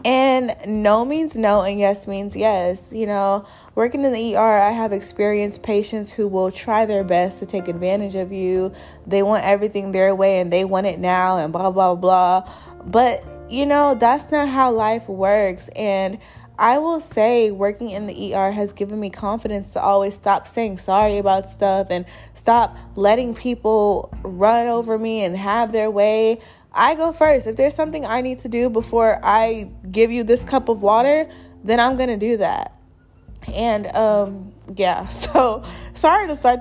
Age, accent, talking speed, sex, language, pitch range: 20-39, American, 180 wpm, female, English, 190-230 Hz